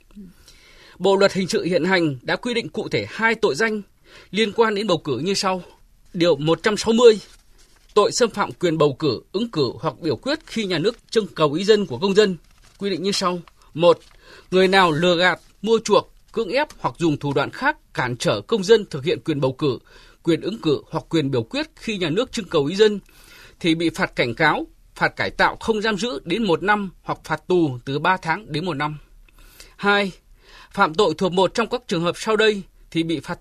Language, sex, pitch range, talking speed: Vietnamese, male, 160-210 Hz, 220 wpm